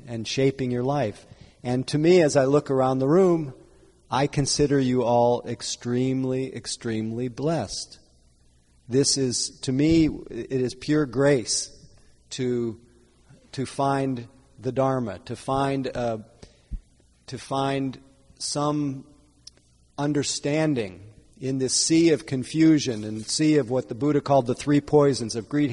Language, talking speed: English, 135 wpm